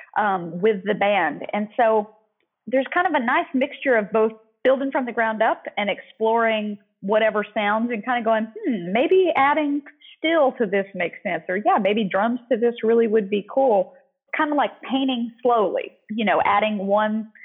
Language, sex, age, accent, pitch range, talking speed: English, female, 40-59, American, 200-265 Hz, 185 wpm